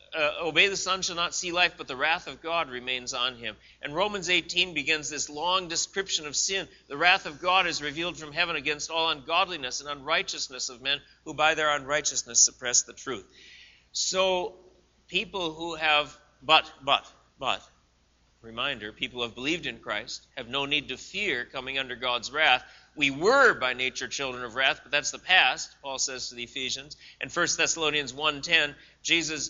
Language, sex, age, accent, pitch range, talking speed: English, male, 40-59, American, 130-170 Hz, 185 wpm